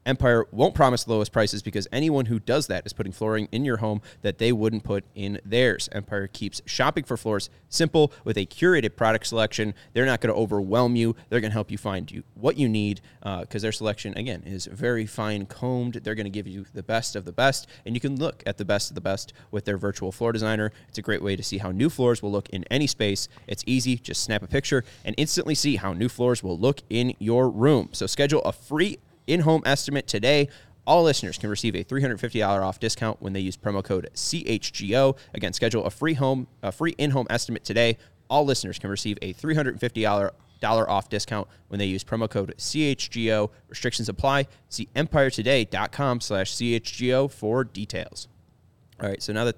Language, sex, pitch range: English, male, 100-125 Hz